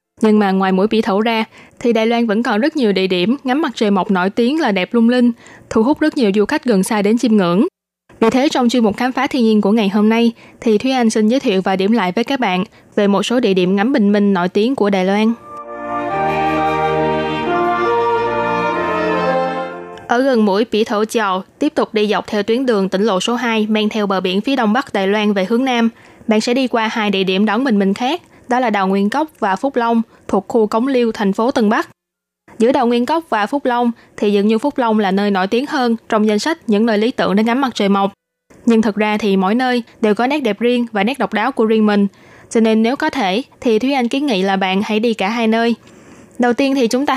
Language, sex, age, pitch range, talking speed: Vietnamese, female, 20-39, 195-240 Hz, 255 wpm